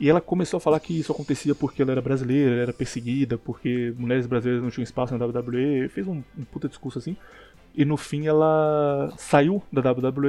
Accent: Brazilian